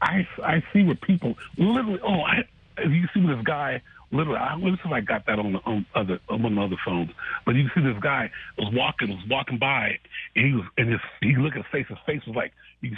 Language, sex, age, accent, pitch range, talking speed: English, male, 40-59, American, 120-160 Hz, 230 wpm